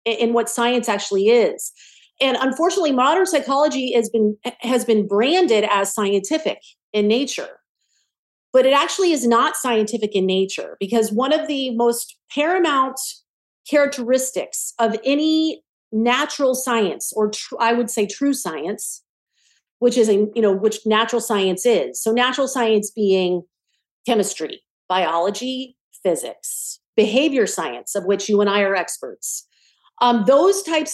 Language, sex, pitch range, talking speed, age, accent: English, female, 210-270 Hz, 140 wpm, 40-59, American